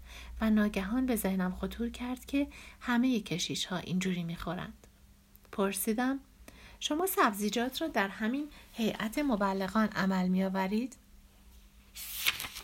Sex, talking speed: female, 115 wpm